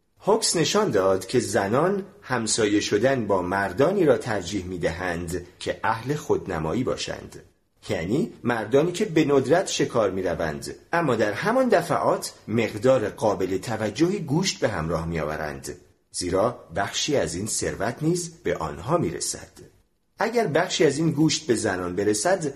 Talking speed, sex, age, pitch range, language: 145 wpm, male, 40-59, 100-160 Hz, Persian